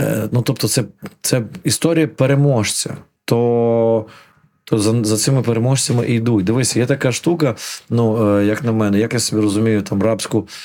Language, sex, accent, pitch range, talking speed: Ukrainian, male, native, 110-135 Hz, 145 wpm